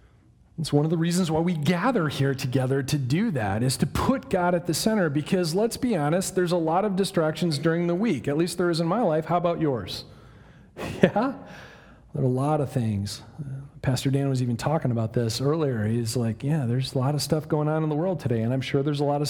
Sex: male